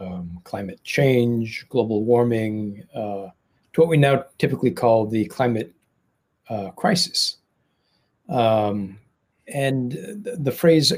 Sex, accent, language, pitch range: male, American, English, 110-140 Hz